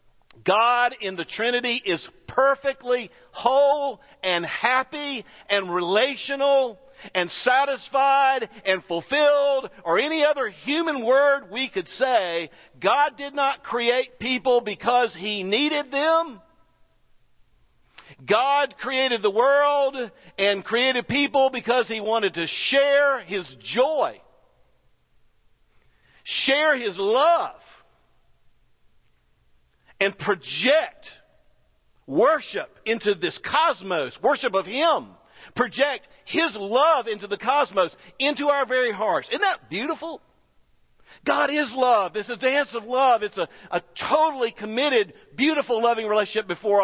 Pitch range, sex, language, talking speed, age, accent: 195-280 Hz, male, English, 115 wpm, 50-69, American